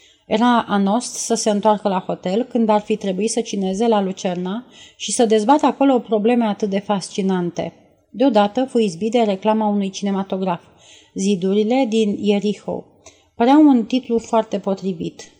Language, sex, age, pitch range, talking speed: Romanian, female, 30-49, 195-235 Hz, 150 wpm